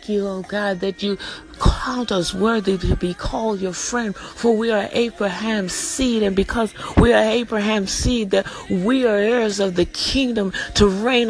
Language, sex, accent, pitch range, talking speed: English, female, American, 200-255 Hz, 185 wpm